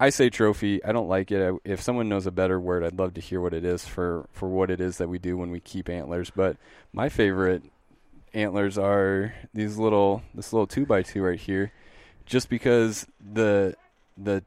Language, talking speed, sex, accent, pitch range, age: English, 210 wpm, male, American, 95-110 Hz, 20-39